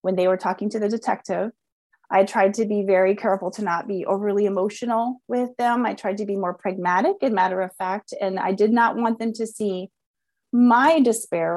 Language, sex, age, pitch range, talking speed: English, female, 30-49, 185-235 Hz, 210 wpm